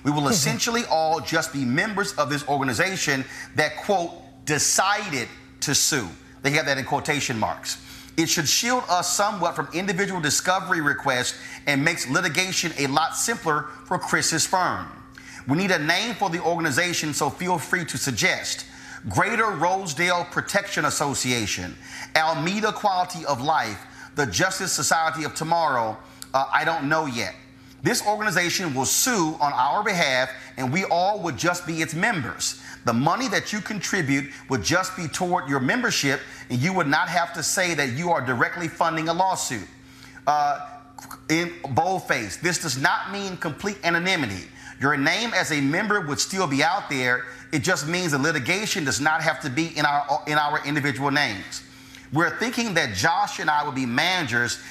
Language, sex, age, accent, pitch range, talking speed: English, male, 30-49, American, 135-180 Hz, 170 wpm